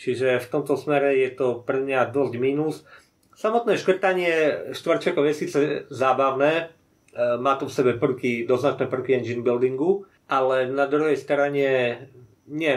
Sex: male